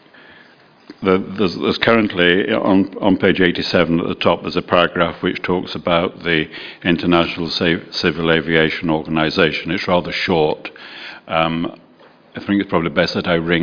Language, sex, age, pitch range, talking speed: English, male, 60-79, 80-90 Hz, 155 wpm